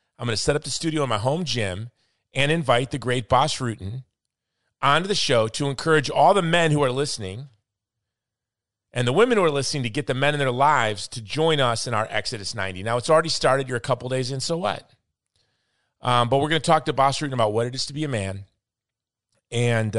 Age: 40-59